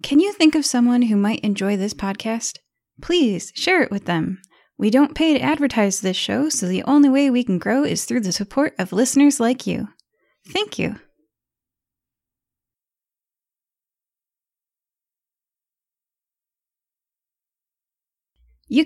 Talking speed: 125 wpm